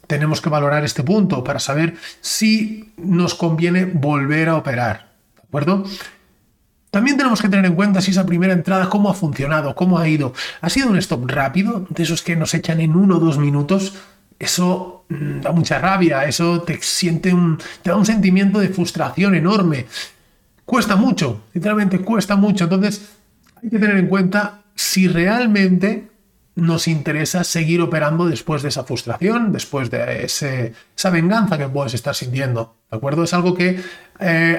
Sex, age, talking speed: male, 40-59, 165 wpm